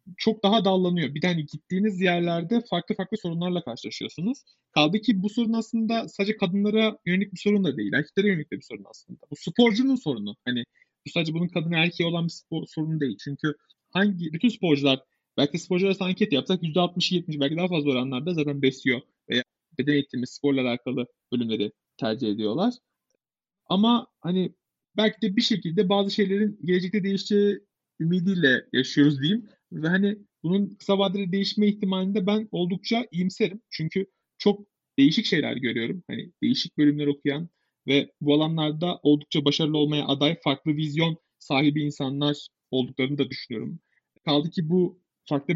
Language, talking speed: Turkish, 155 wpm